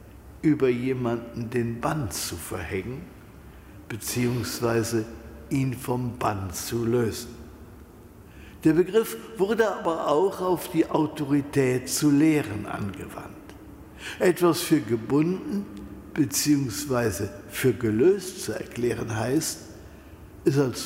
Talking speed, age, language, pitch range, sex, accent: 100 wpm, 60-79, German, 110-160 Hz, male, German